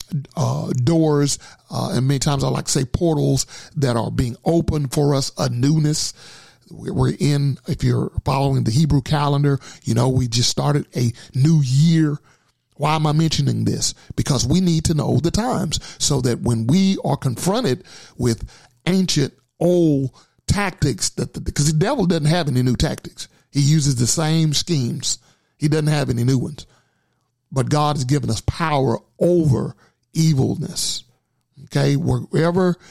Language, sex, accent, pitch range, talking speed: English, male, American, 125-155 Hz, 160 wpm